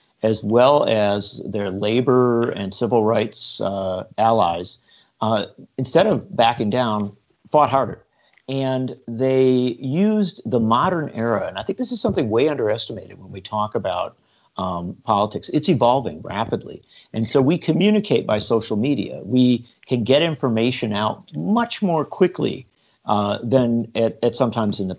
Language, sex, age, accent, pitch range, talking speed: English, male, 50-69, American, 105-135 Hz, 150 wpm